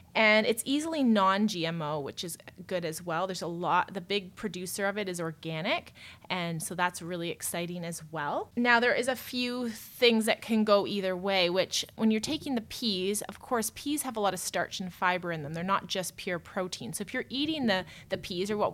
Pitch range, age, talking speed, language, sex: 180-220 Hz, 20-39, 220 wpm, English, female